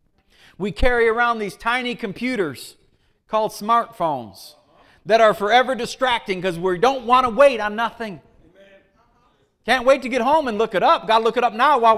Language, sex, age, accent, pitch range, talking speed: English, male, 40-59, American, 200-255 Hz, 180 wpm